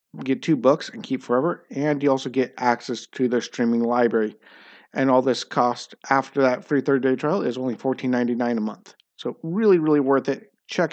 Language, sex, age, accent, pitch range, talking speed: English, male, 50-69, American, 125-170 Hz, 190 wpm